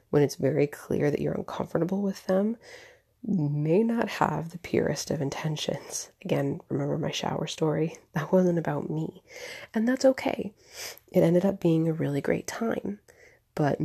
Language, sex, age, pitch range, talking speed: English, female, 30-49, 150-200 Hz, 160 wpm